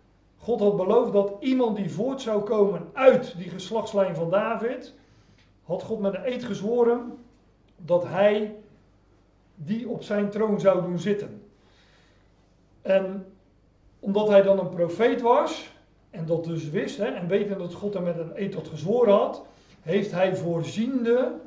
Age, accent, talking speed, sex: 40-59, Dutch, 155 wpm, male